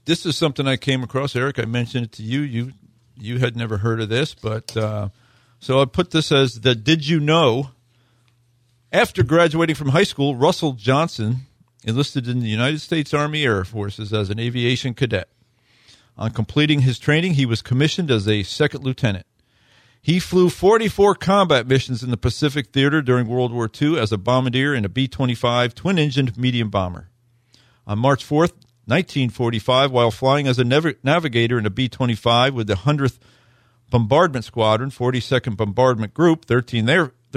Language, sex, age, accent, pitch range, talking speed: English, male, 50-69, American, 115-145 Hz, 165 wpm